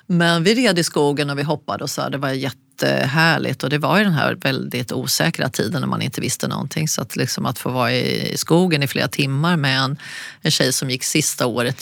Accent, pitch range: native, 145-185 Hz